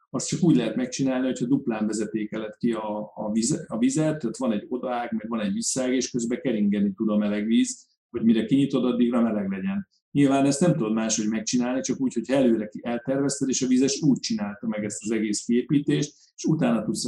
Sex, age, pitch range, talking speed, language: male, 40-59, 110-140 Hz, 210 wpm, Hungarian